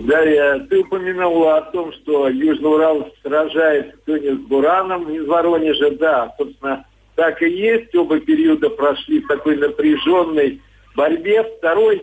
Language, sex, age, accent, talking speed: Russian, male, 50-69, native, 130 wpm